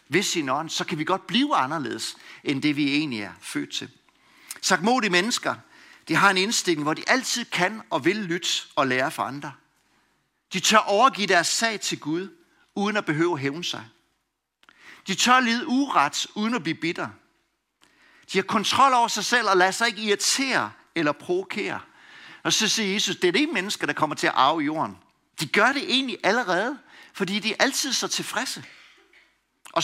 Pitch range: 165-240 Hz